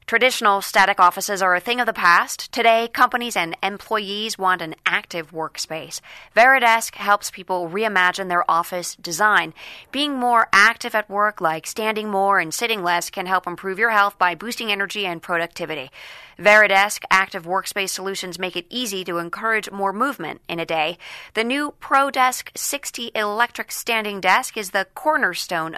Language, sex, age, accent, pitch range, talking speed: English, female, 30-49, American, 180-225 Hz, 160 wpm